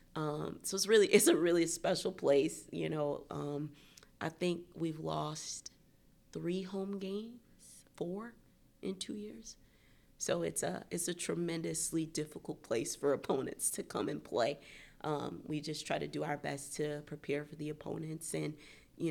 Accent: American